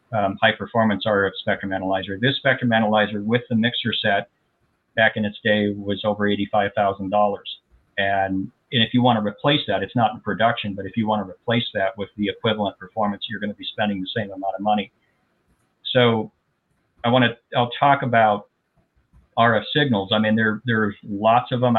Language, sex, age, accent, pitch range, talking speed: English, male, 50-69, American, 105-115 Hz, 190 wpm